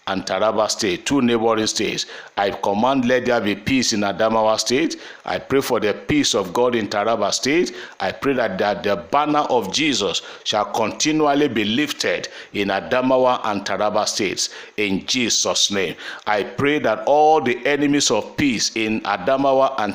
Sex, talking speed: male, 170 wpm